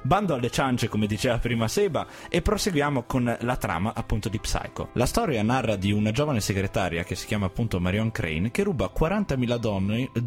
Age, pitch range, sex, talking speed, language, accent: 20-39, 100-145 Hz, male, 180 wpm, Italian, native